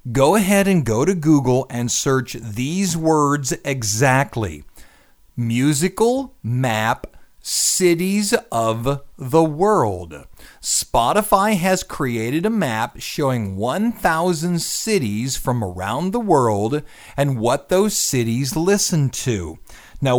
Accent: American